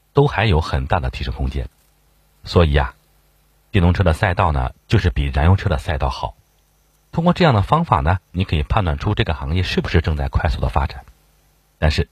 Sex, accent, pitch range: male, native, 75-105 Hz